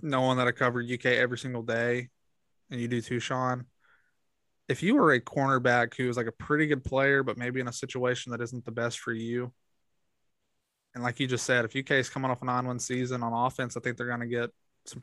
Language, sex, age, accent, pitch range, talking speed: English, male, 20-39, American, 120-135 Hz, 230 wpm